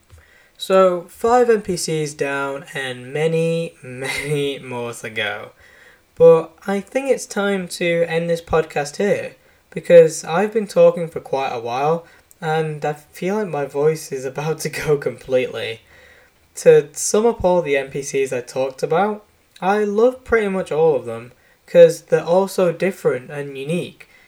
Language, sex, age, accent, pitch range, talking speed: English, male, 10-29, British, 150-210 Hz, 155 wpm